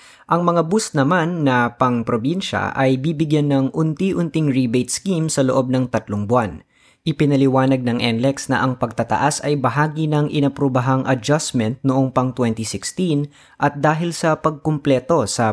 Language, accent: Filipino, native